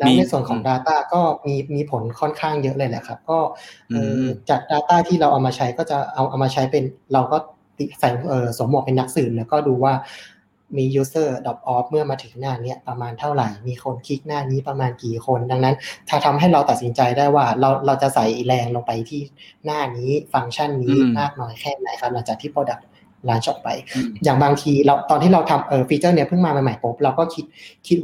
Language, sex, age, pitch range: Thai, male, 30-49, 130-150 Hz